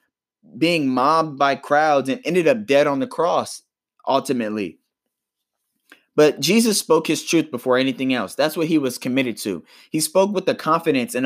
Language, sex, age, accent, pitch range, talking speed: English, male, 20-39, American, 135-175 Hz, 170 wpm